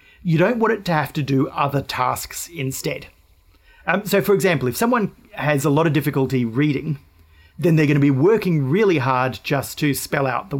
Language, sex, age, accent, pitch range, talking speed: English, male, 40-59, Australian, 130-160 Hz, 205 wpm